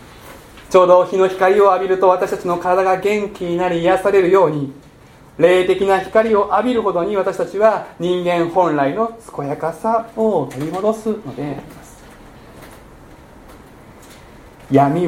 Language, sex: Japanese, male